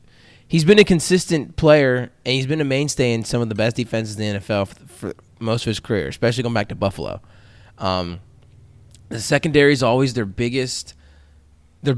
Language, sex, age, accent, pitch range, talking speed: English, male, 20-39, American, 105-130 Hz, 190 wpm